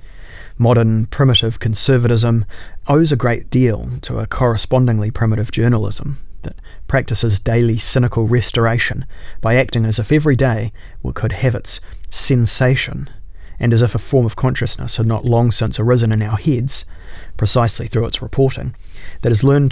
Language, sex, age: English, male, 30-49